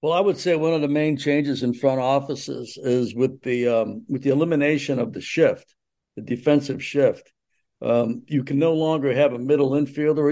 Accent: American